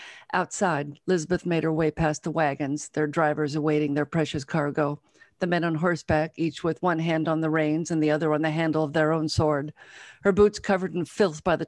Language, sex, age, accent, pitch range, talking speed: English, female, 50-69, American, 150-180 Hz, 215 wpm